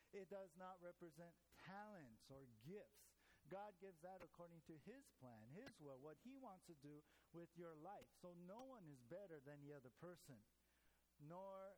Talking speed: 175 wpm